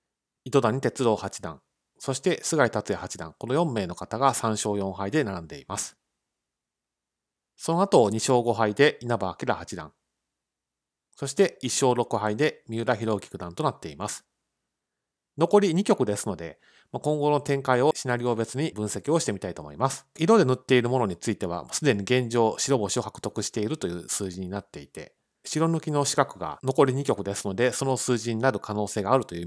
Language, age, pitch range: Japanese, 30-49, 105-140 Hz